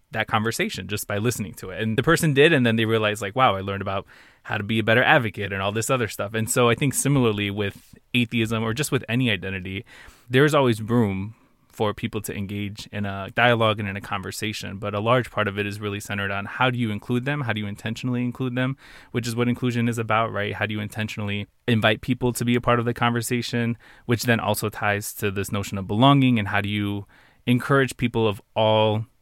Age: 20-39